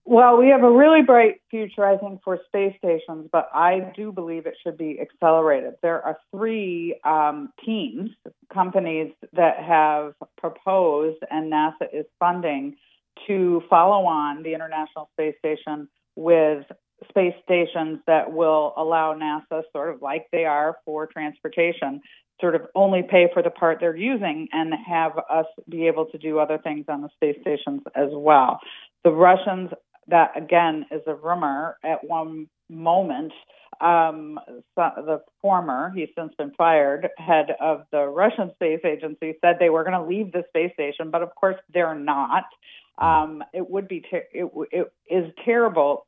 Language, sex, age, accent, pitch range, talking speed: English, female, 40-59, American, 155-185 Hz, 160 wpm